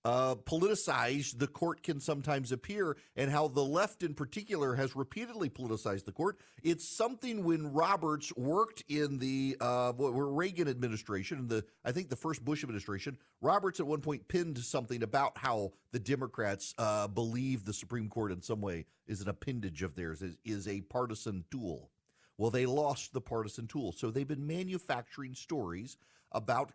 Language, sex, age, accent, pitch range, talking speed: English, male, 40-59, American, 120-170 Hz, 170 wpm